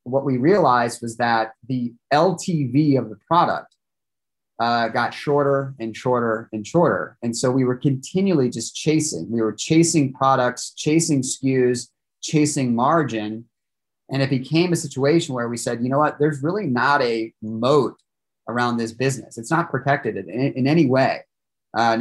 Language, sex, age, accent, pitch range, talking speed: English, male, 30-49, American, 115-145 Hz, 160 wpm